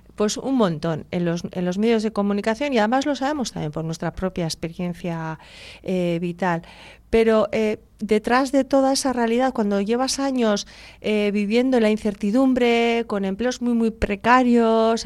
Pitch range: 195-235 Hz